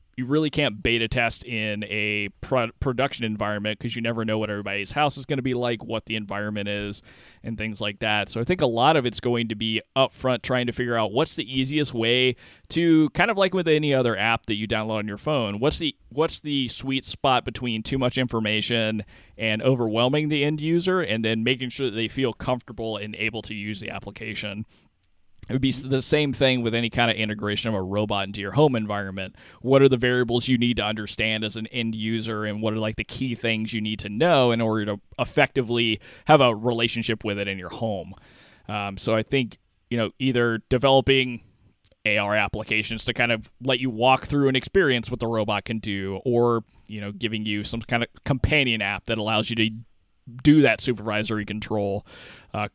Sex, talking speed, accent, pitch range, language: male, 215 wpm, American, 105-130 Hz, English